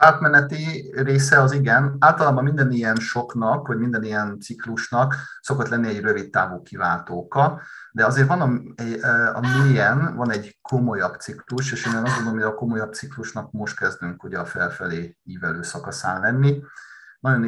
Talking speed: 150 wpm